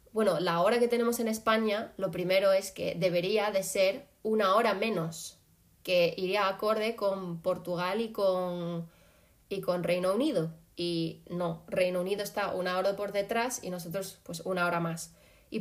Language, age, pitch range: Spanish, 20-39, 180-225 Hz